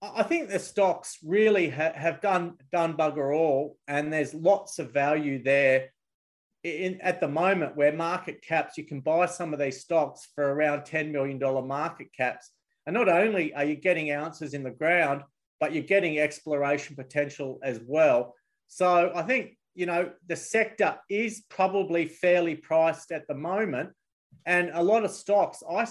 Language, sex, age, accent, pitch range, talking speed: English, male, 40-59, Australian, 150-190 Hz, 170 wpm